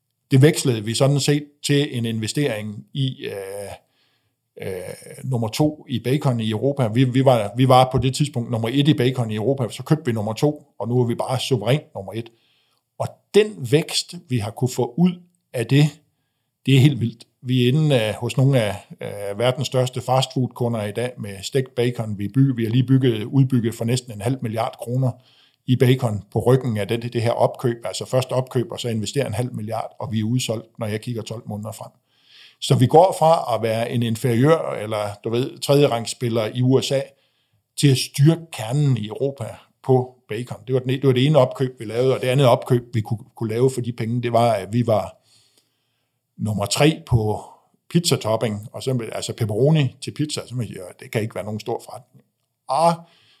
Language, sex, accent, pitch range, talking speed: Danish, male, native, 115-135 Hz, 205 wpm